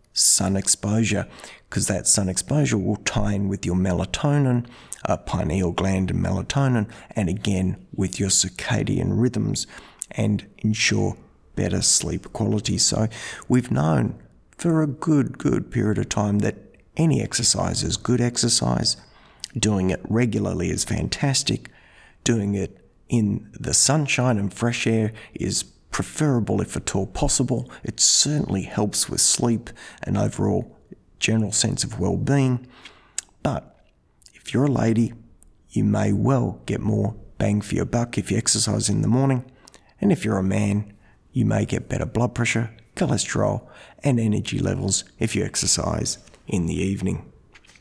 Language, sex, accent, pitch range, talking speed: English, male, Australian, 100-120 Hz, 145 wpm